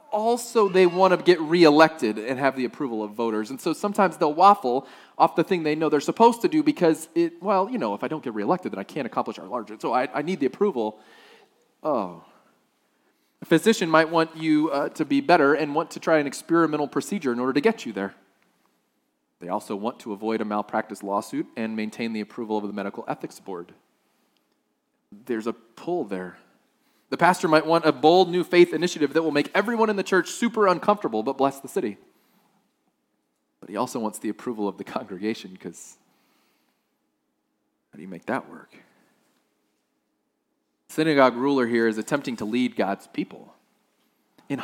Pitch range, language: 115-180 Hz, English